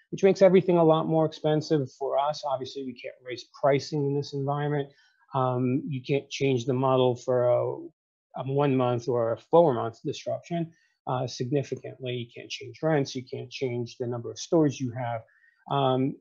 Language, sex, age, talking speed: English, male, 40-59, 180 wpm